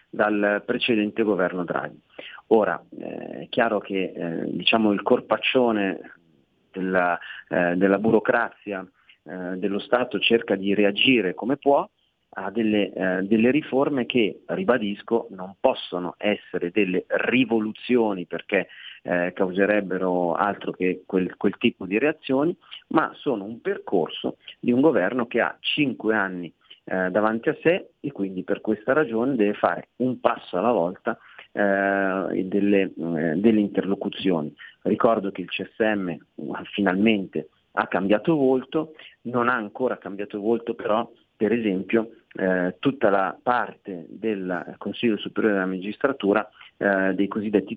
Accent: native